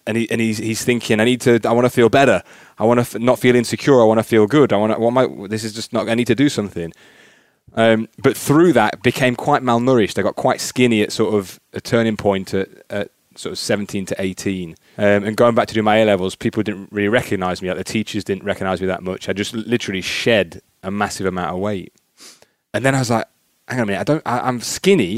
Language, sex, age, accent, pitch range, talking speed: English, male, 20-39, British, 95-115 Hz, 255 wpm